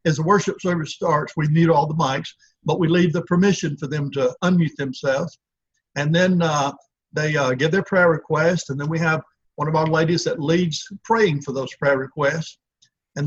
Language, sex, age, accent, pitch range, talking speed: English, male, 60-79, American, 145-175 Hz, 205 wpm